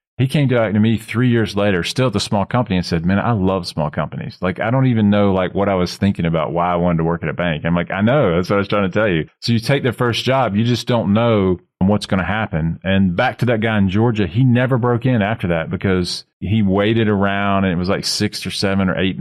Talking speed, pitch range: 285 wpm, 90-110 Hz